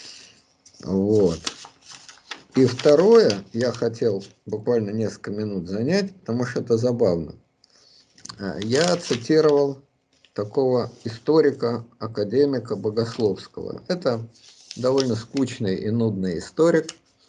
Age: 50-69